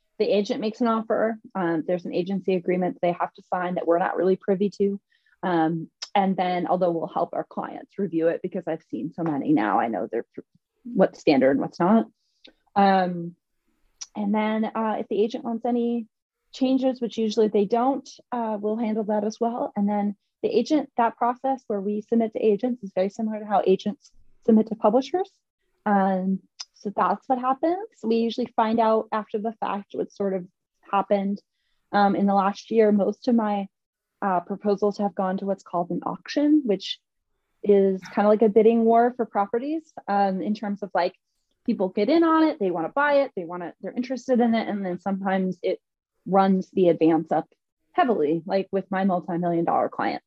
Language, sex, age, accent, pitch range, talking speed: English, female, 30-49, American, 190-230 Hz, 195 wpm